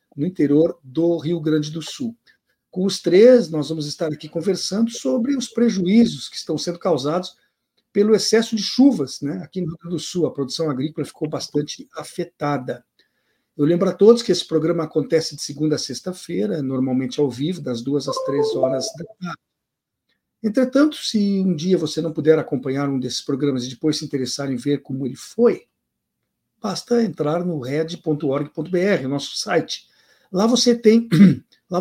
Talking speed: 170 wpm